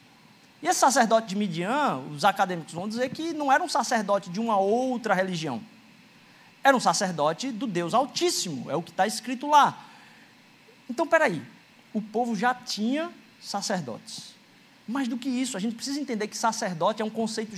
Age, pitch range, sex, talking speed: 20-39, 200-260 Hz, male, 175 wpm